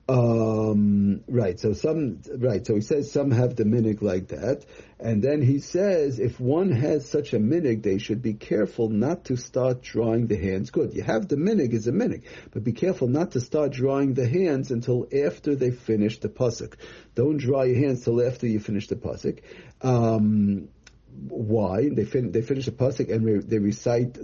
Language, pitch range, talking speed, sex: English, 110-135 Hz, 195 wpm, male